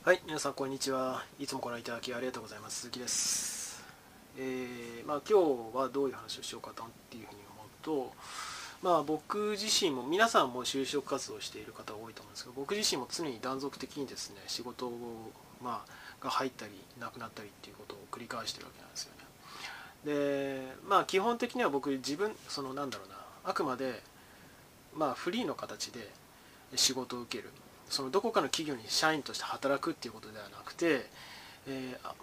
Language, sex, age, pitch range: Japanese, male, 20-39, 125-160 Hz